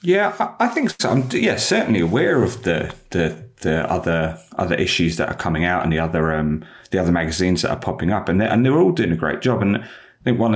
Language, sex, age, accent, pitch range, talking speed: English, male, 30-49, British, 80-100 Hz, 245 wpm